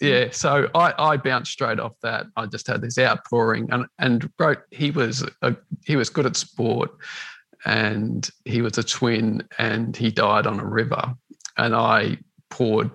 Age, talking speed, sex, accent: 40-59, 175 wpm, male, Australian